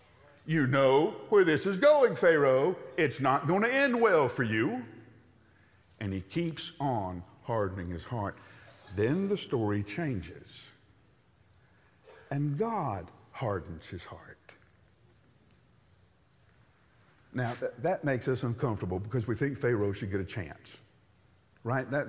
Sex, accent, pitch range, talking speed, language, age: male, American, 115-185 Hz, 130 wpm, English, 50-69